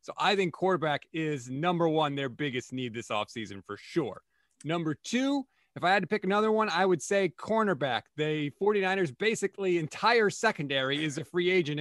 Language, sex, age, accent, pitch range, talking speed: English, male, 30-49, American, 150-185 Hz, 185 wpm